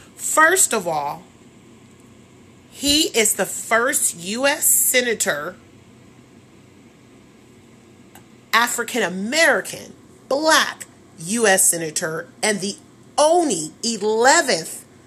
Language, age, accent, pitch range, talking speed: English, 30-49, American, 195-285 Hz, 70 wpm